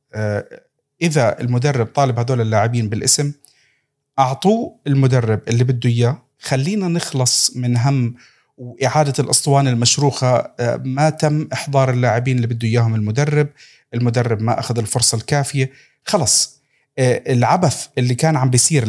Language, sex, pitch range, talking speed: Arabic, male, 120-145 Hz, 120 wpm